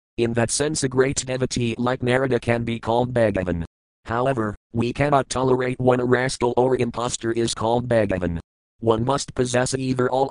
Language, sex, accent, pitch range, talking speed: English, male, American, 100-125 Hz, 170 wpm